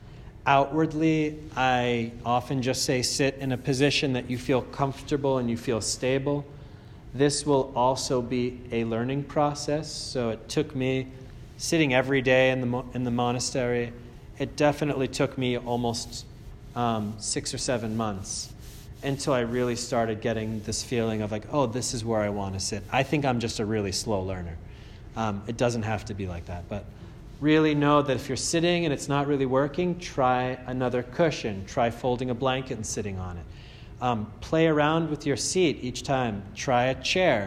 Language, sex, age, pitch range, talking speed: English, male, 30-49, 115-140 Hz, 180 wpm